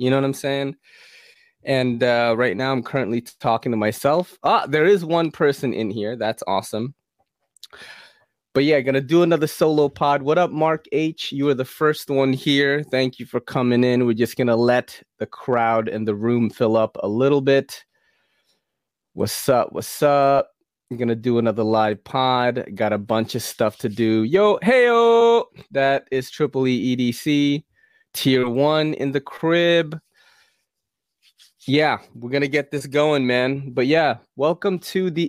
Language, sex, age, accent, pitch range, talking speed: English, male, 20-39, American, 115-150 Hz, 175 wpm